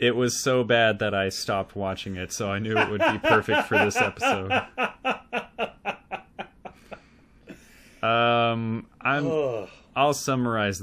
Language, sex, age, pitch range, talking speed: English, male, 20-39, 100-120 Hz, 120 wpm